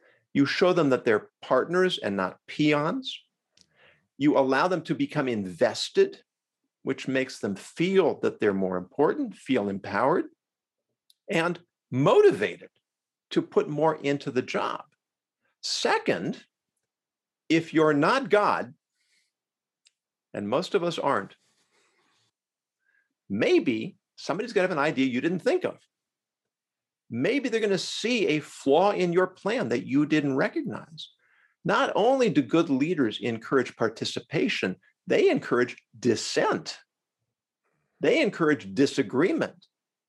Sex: male